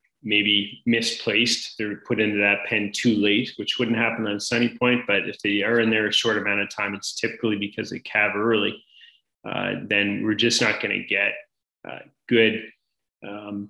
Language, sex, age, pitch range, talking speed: English, male, 30-49, 105-120 Hz, 190 wpm